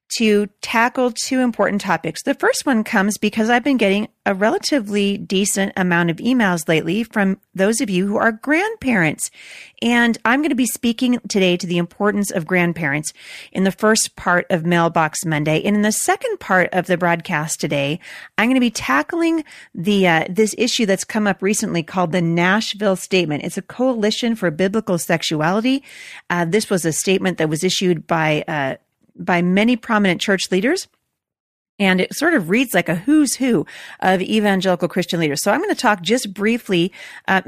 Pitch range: 175-225 Hz